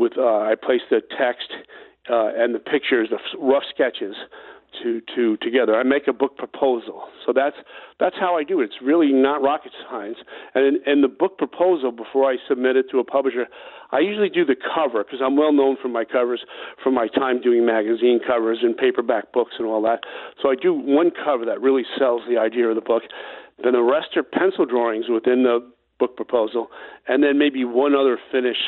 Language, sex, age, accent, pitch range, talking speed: English, male, 50-69, American, 120-160 Hz, 205 wpm